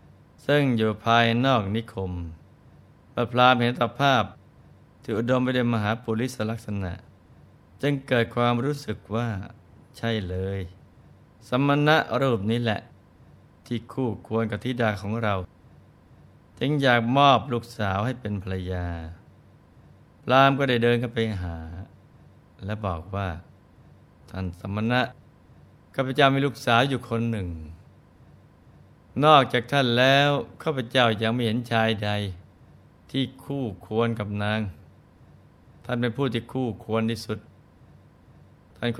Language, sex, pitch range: Thai, male, 100-125 Hz